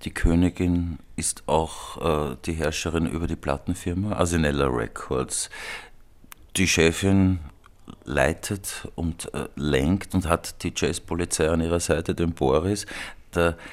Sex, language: male, German